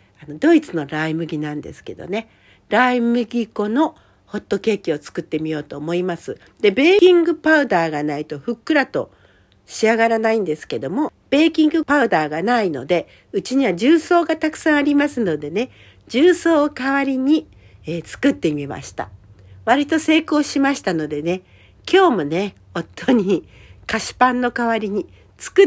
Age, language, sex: 60-79, Japanese, female